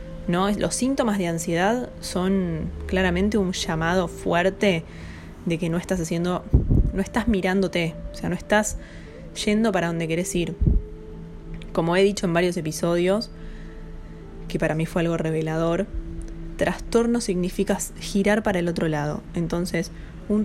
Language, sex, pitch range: Spanish, female, 165-205 Hz